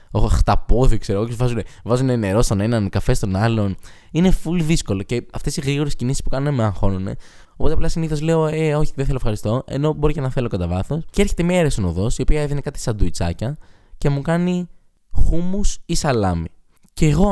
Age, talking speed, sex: 20-39, 200 wpm, male